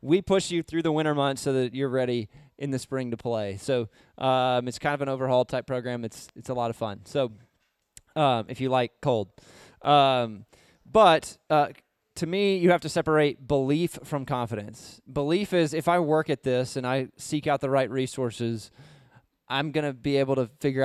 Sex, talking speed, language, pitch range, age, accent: male, 200 wpm, English, 120-155 Hz, 20-39, American